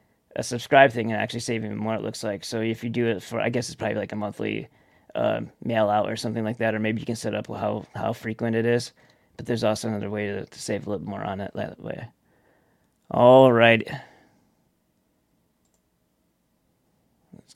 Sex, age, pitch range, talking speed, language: male, 30-49, 110-130 Hz, 200 wpm, English